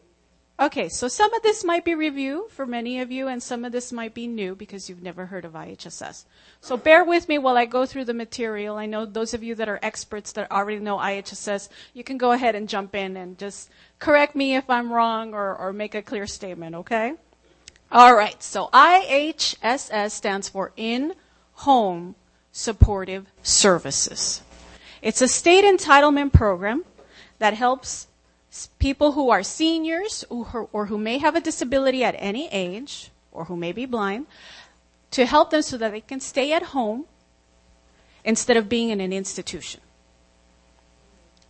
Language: English